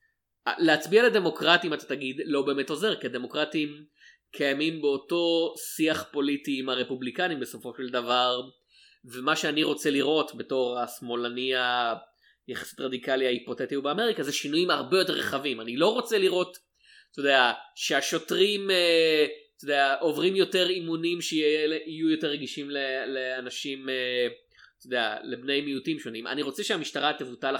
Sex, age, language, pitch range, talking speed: male, 20-39, Hebrew, 125-155 Hz, 120 wpm